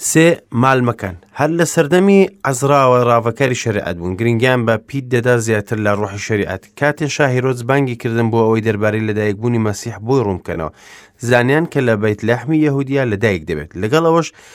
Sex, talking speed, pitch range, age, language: male, 160 wpm, 100-135 Hz, 30-49, English